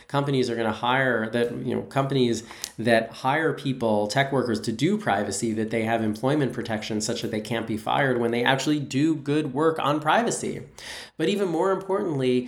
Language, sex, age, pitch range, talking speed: English, male, 20-39, 110-135 Hz, 190 wpm